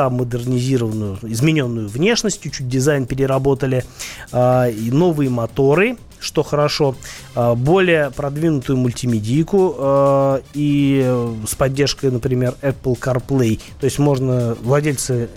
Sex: male